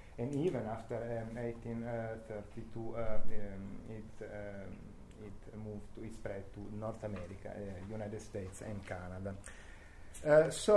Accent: Italian